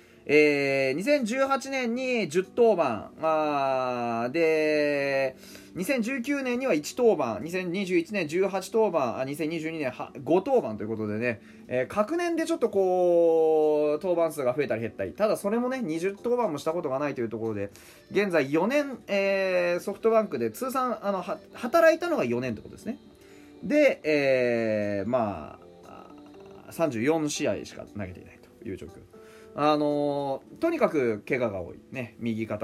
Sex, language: male, Japanese